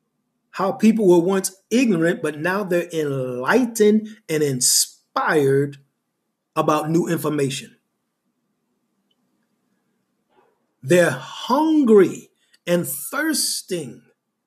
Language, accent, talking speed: English, American, 75 wpm